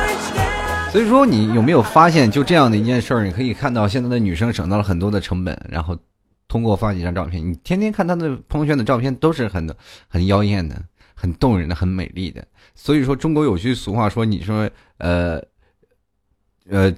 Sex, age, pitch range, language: male, 20-39, 85-110 Hz, Chinese